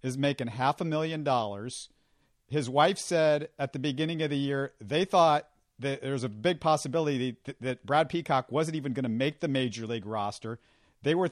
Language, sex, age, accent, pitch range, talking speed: English, male, 50-69, American, 125-160 Hz, 200 wpm